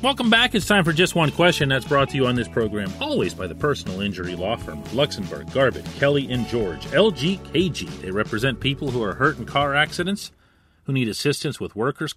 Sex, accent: male, American